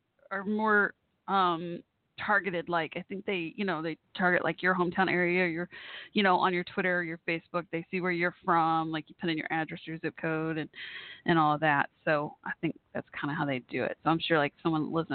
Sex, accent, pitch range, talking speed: female, American, 170-225 Hz, 240 wpm